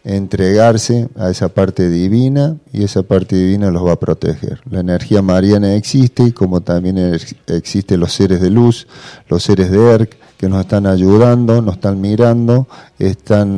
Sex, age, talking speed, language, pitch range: male, 40-59, 160 wpm, Spanish, 95-115 Hz